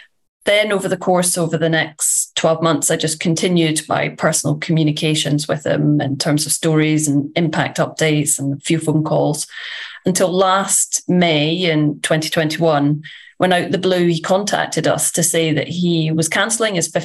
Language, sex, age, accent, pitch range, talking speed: English, female, 30-49, British, 160-195 Hz, 170 wpm